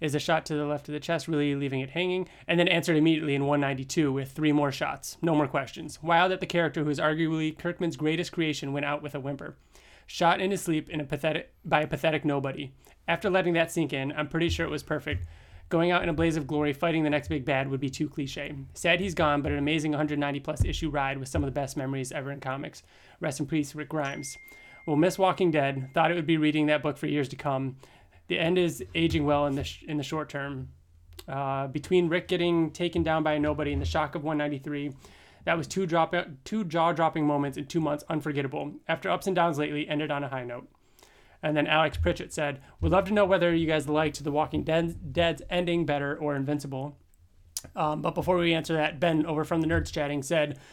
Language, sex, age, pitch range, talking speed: English, male, 20-39, 145-165 Hz, 235 wpm